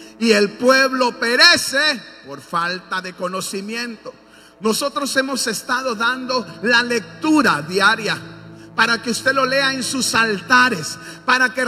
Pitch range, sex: 245-300 Hz, male